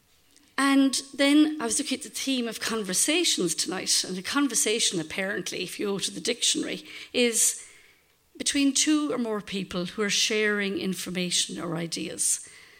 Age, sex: 50-69, female